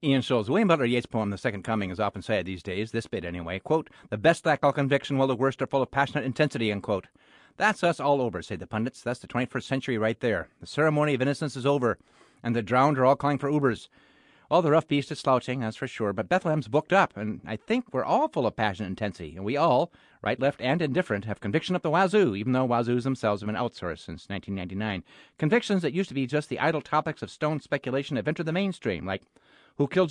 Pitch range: 115-160 Hz